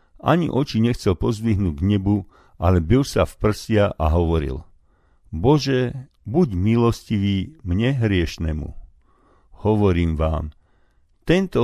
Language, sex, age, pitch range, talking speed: Slovak, male, 50-69, 85-120 Hz, 110 wpm